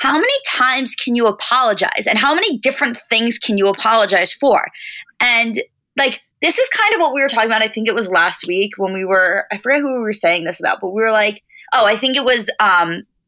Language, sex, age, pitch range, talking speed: English, female, 20-39, 190-250 Hz, 240 wpm